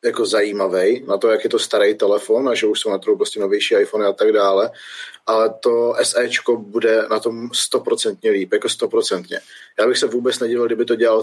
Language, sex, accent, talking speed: Czech, male, native, 210 wpm